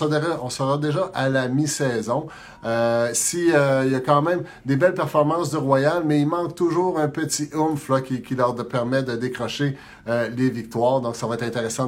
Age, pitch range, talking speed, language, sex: 30-49, 115-150 Hz, 205 wpm, French, male